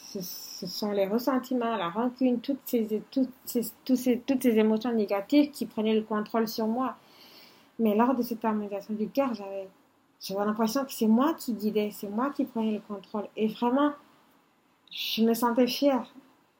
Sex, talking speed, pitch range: female, 155 wpm, 210-270 Hz